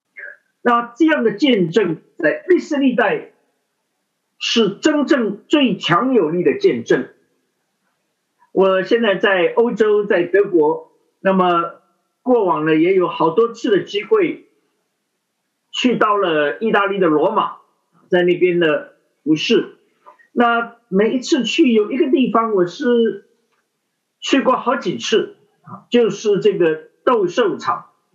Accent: native